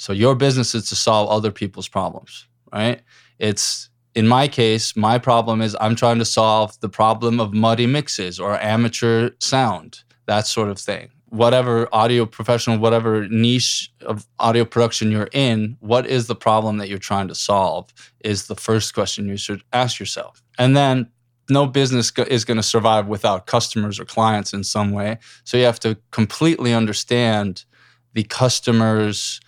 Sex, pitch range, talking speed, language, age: male, 105-120 Hz, 170 wpm, English, 20-39